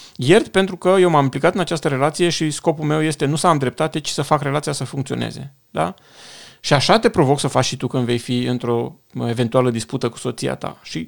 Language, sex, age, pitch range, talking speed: Romanian, male, 40-59, 130-175 Hz, 220 wpm